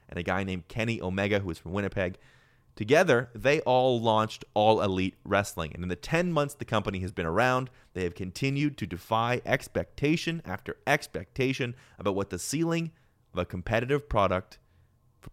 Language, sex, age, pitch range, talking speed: English, male, 30-49, 95-130 Hz, 170 wpm